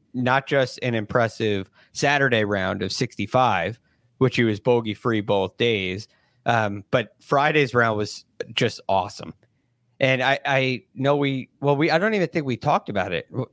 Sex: male